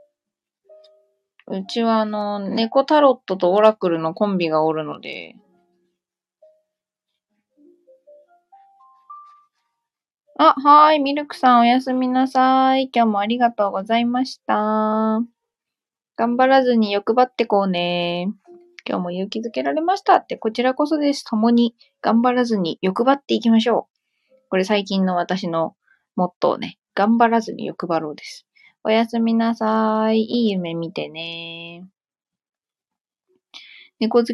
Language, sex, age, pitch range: Japanese, female, 20-39, 185-265 Hz